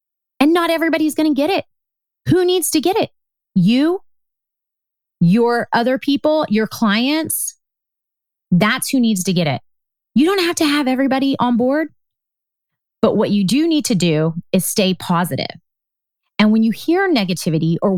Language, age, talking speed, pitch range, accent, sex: English, 30-49, 160 wpm, 175-260 Hz, American, female